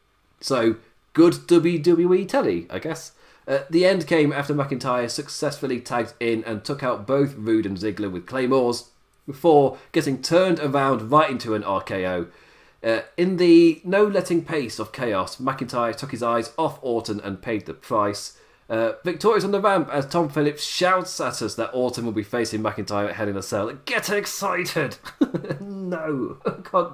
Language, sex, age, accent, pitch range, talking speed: English, male, 30-49, British, 115-175 Hz, 165 wpm